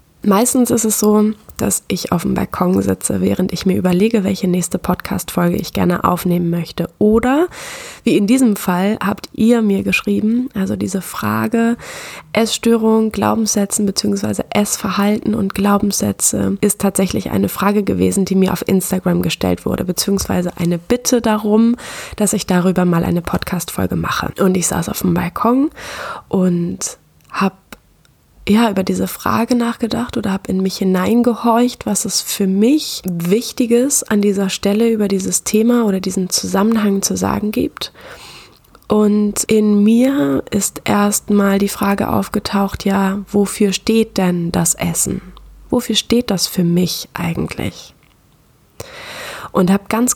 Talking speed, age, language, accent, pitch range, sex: 140 wpm, 20-39, German, German, 185-220 Hz, female